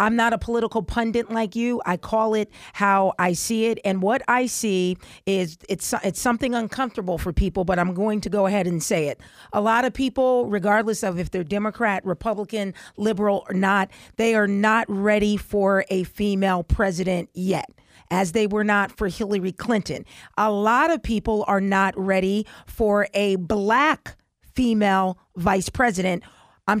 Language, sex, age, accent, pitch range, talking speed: English, female, 40-59, American, 195-230 Hz, 170 wpm